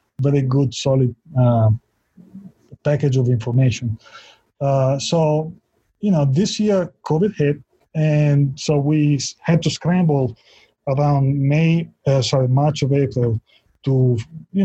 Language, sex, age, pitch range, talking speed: English, male, 30-49, 130-160 Hz, 125 wpm